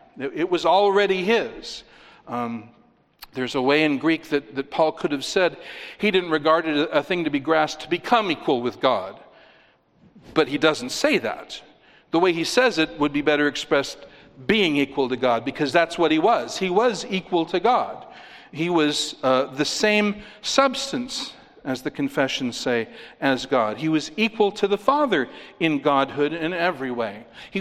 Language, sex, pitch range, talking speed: English, male, 145-200 Hz, 180 wpm